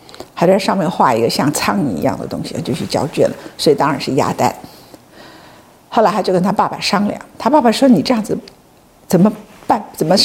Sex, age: female, 50-69